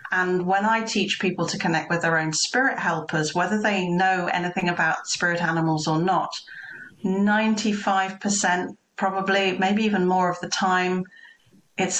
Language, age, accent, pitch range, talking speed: English, 40-59, British, 170-210 Hz, 150 wpm